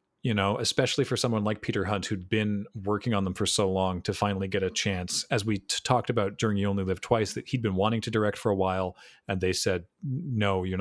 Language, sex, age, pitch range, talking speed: English, male, 40-59, 95-120 Hz, 245 wpm